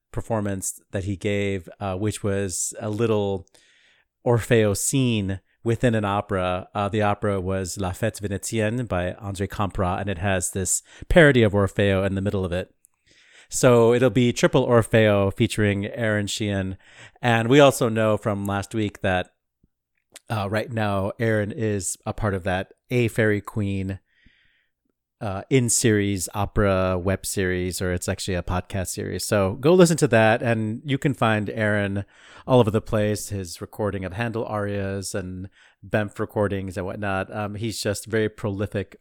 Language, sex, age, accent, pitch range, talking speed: English, male, 30-49, American, 100-115 Hz, 160 wpm